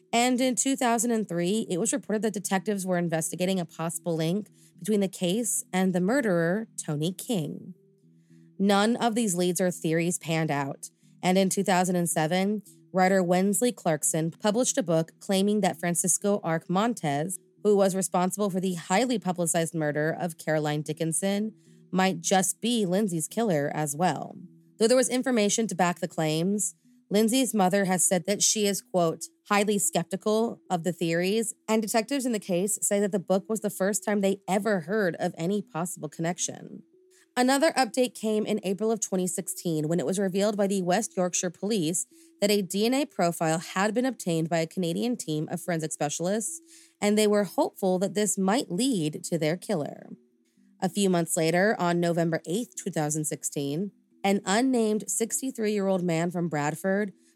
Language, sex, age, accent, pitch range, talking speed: English, female, 30-49, American, 170-210 Hz, 165 wpm